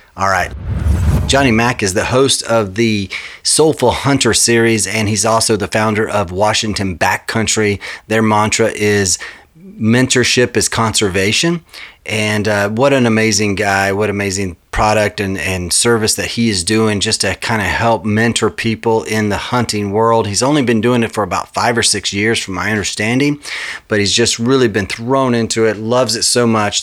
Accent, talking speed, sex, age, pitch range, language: American, 175 wpm, male, 30-49, 100-115 Hz, English